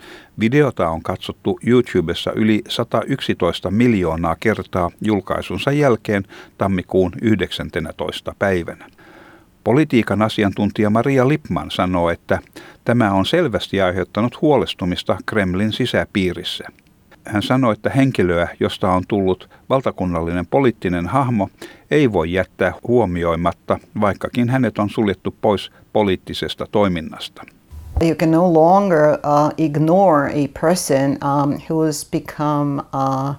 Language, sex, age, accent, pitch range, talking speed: Finnish, male, 60-79, native, 110-155 Hz, 105 wpm